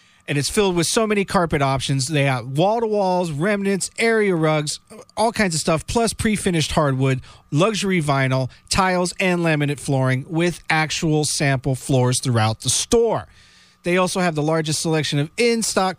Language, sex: English, male